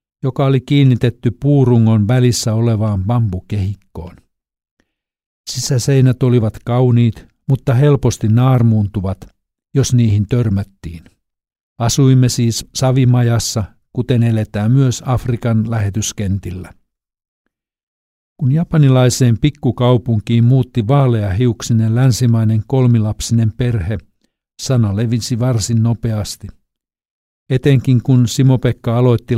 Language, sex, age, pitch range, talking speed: Finnish, male, 60-79, 110-125 Hz, 80 wpm